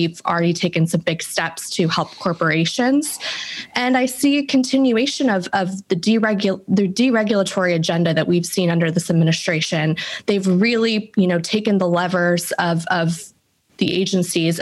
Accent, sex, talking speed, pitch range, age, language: American, female, 155 wpm, 170-205 Hz, 20-39, English